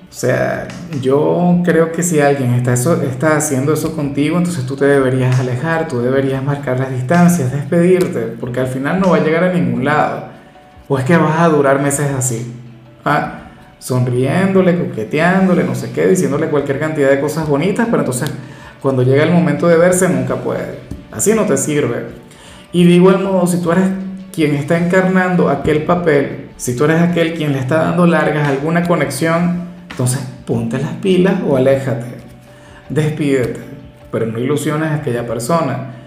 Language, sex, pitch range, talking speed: Spanish, male, 140-180 Hz, 175 wpm